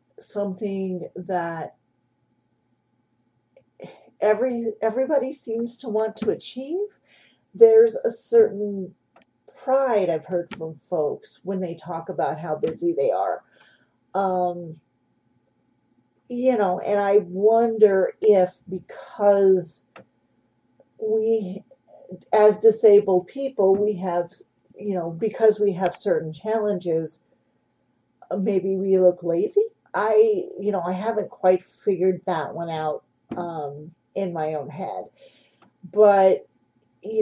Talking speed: 110 wpm